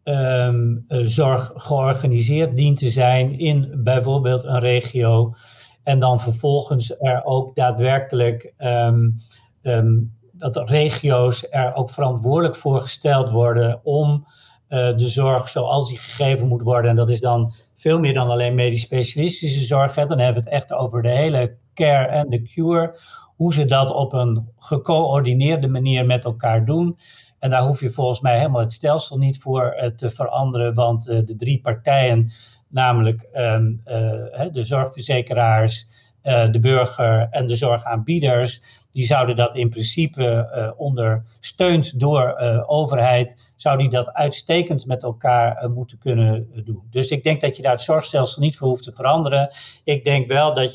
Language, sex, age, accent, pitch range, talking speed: Dutch, male, 50-69, Dutch, 120-140 Hz, 145 wpm